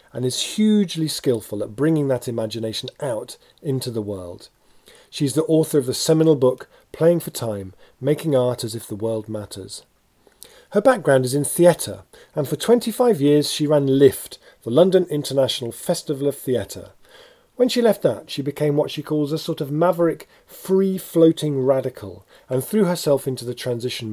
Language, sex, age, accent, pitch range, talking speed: English, male, 40-59, British, 115-165 Hz, 170 wpm